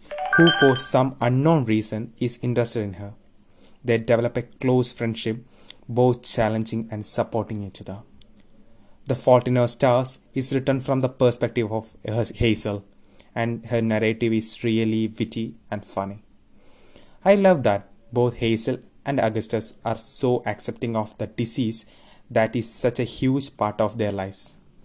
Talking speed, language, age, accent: 150 wpm, English, 20-39, Indian